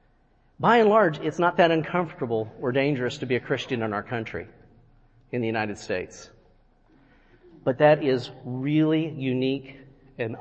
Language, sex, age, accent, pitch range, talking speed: English, male, 40-59, American, 125-165 Hz, 150 wpm